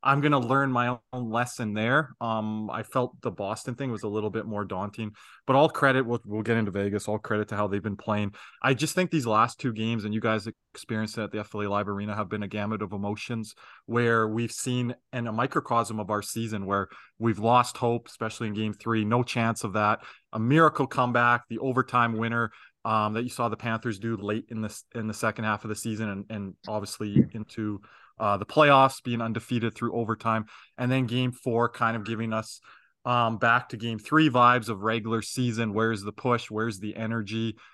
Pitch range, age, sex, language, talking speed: 110-120 Hz, 20-39, male, English, 215 wpm